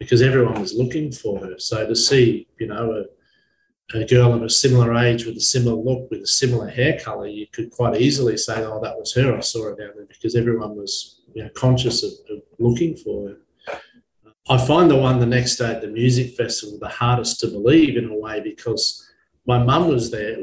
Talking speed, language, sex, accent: 215 wpm, English, male, Australian